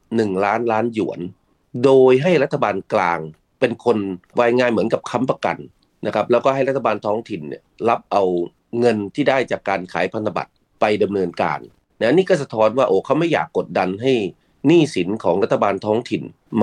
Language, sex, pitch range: Thai, male, 95-130 Hz